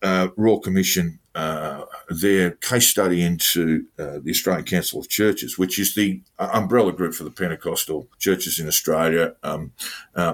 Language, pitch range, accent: English, 80-105 Hz, Australian